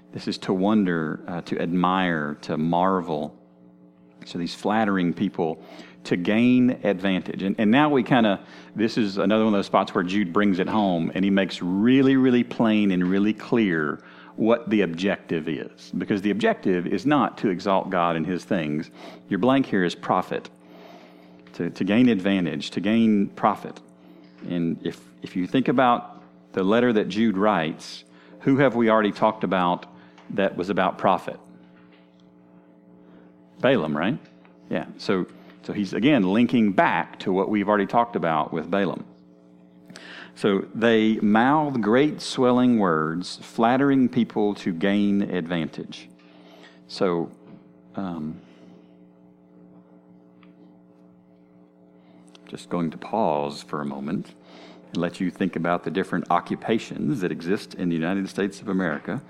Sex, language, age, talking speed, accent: male, English, 40-59, 145 wpm, American